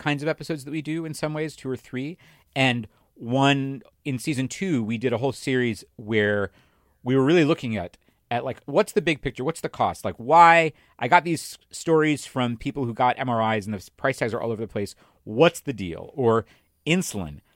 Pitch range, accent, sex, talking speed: 105-140 Hz, American, male, 210 wpm